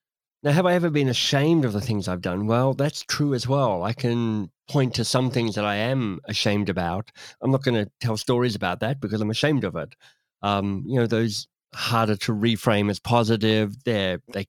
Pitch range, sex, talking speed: 105-130 Hz, male, 205 wpm